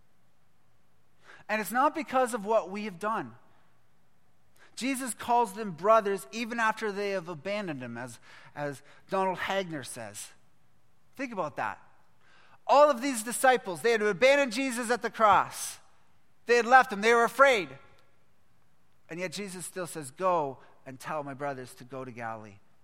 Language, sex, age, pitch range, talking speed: English, male, 30-49, 150-225 Hz, 155 wpm